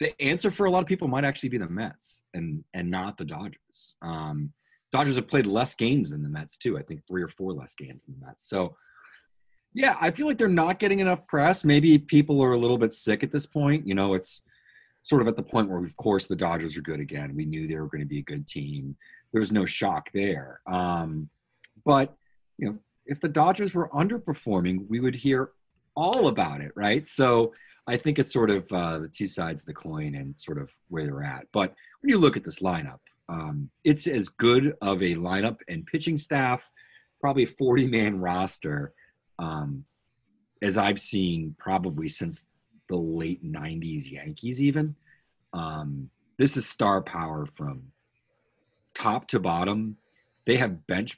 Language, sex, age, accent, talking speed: English, male, 30-49, American, 195 wpm